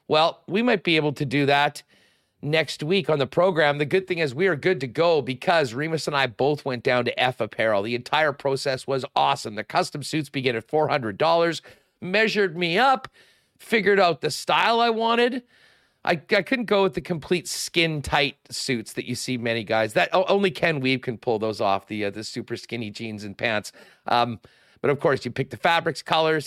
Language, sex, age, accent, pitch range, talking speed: English, male, 40-59, American, 125-165 Hz, 215 wpm